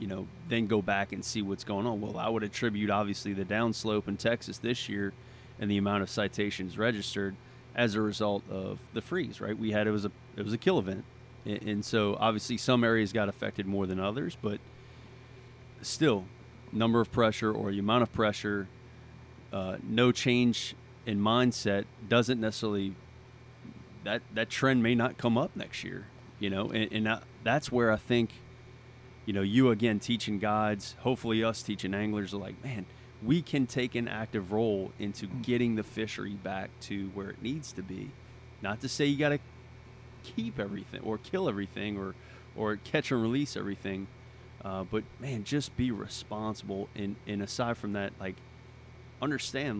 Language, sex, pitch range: English, male, 105-125 Hz